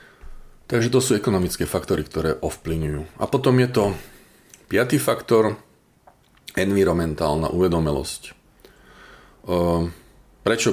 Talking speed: 90 wpm